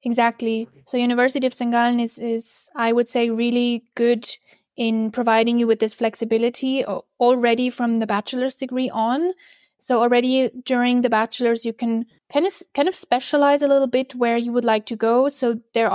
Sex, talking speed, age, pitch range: female, 180 wpm, 20-39, 225-255 Hz